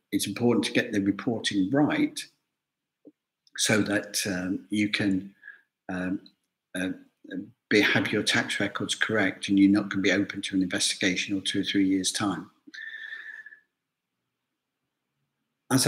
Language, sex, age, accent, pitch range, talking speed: English, male, 50-69, British, 100-130 Hz, 140 wpm